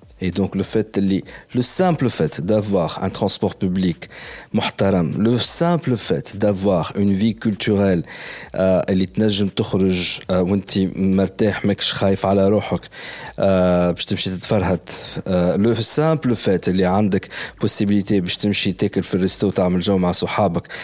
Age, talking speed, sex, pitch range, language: 50-69, 85 wpm, male, 90-105 Hz, Arabic